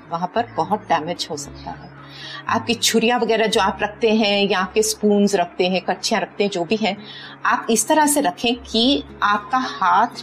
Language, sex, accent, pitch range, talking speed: Hindi, female, native, 180-235 Hz, 195 wpm